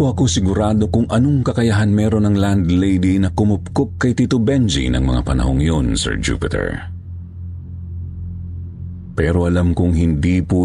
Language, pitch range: Filipino, 85-95 Hz